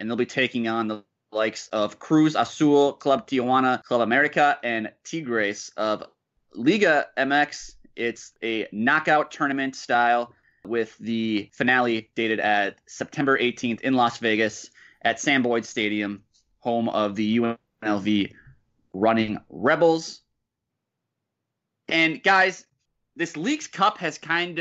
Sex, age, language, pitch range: male, 20-39, English, 115-165 Hz